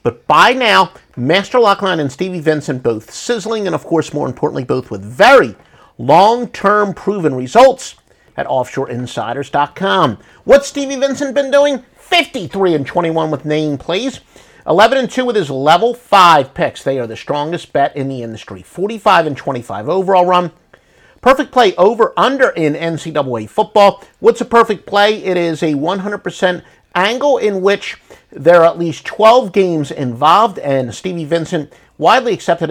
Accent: American